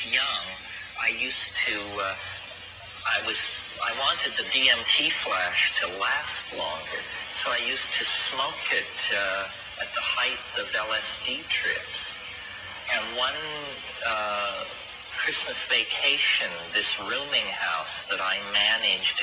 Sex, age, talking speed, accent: male, 40-59, 120 wpm, American